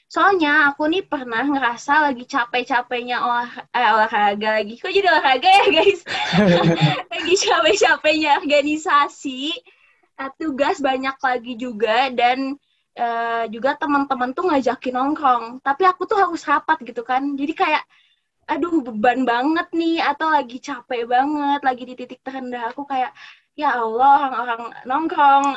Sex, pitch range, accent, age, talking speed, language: female, 245-295 Hz, native, 20-39, 135 wpm, Indonesian